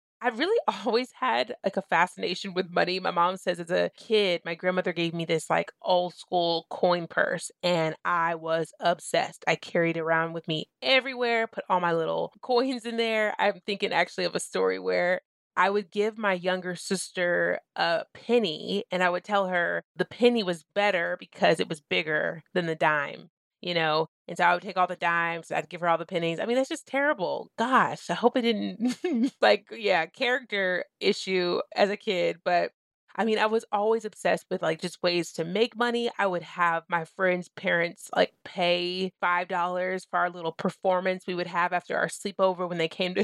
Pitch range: 170-205 Hz